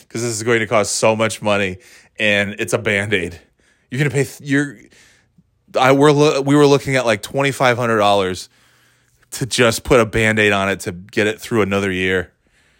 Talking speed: 210 wpm